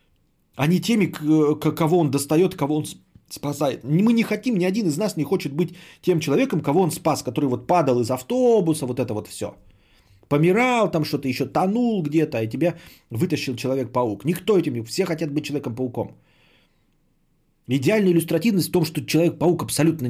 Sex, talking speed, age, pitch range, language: male, 165 wpm, 30-49, 115-165 Hz, Bulgarian